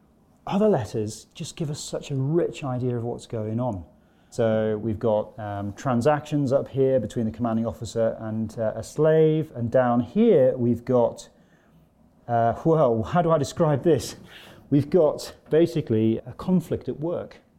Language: English